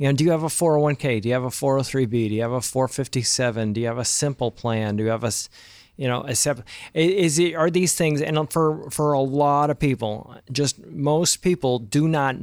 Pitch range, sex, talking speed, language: 120-155 Hz, male, 210 wpm, English